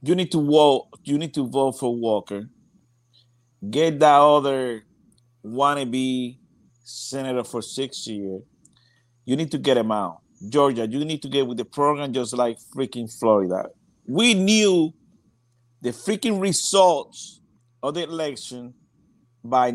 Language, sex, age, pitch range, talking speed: English, male, 50-69, 125-175 Hz, 135 wpm